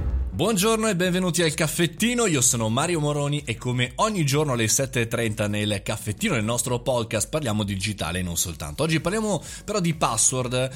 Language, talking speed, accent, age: Italian, 175 wpm, native, 20-39